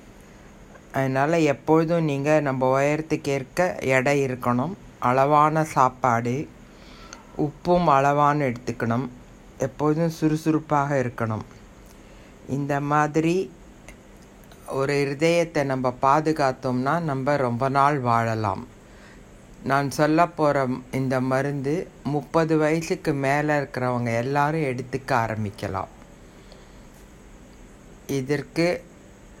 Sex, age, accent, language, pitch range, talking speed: female, 60-79, native, Tamil, 125-150 Hz, 75 wpm